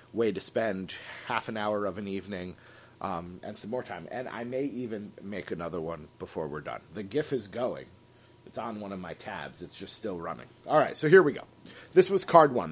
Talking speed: 225 wpm